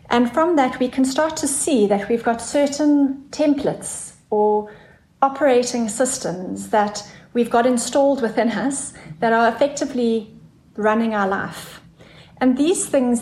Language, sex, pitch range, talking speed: English, female, 210-255 Hz, 140 wpm